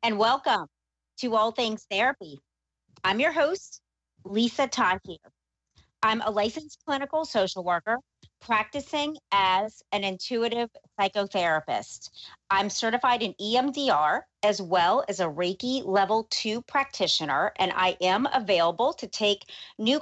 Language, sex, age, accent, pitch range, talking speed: English, female, 40-59, American, 190-250 Hz, 125 wpm